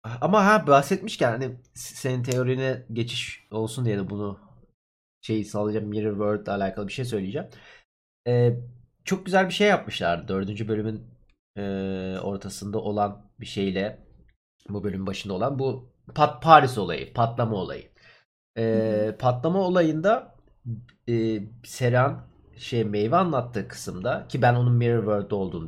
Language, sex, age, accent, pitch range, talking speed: Turkish, male, 30-49, native, 105-135 Hz, 135 wpm